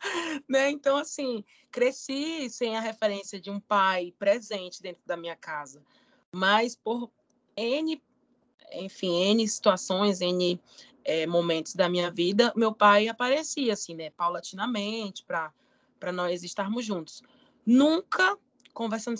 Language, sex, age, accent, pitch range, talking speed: Portuguese, female, 20-39, Brazilian, 180-255 Hz, 120 wpm